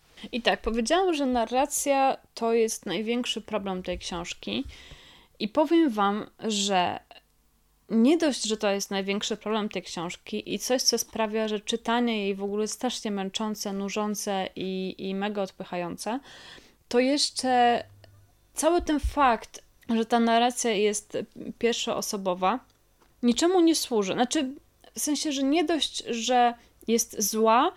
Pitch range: 205-260 Hz